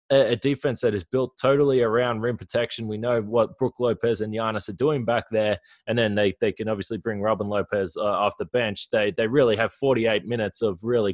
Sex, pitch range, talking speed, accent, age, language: male, 110-135 Hz, 220 wpm, Australian, 20-39, English